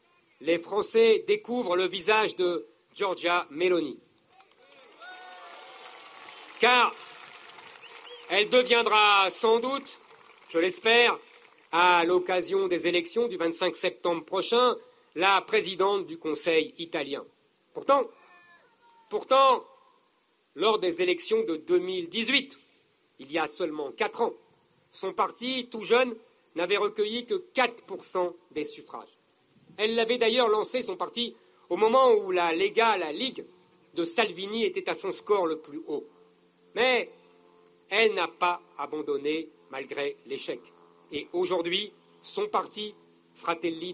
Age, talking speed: 50-69, 115 wpm